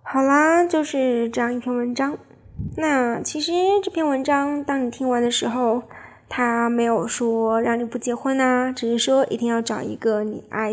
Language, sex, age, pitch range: Chinese, female, 20-39, 225-260 Hz